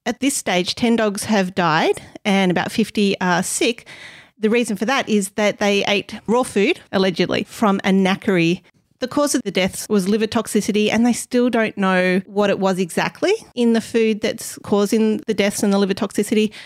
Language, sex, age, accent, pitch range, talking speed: English, female, 30-49, Australian, 190-225 Hz, 195 wpm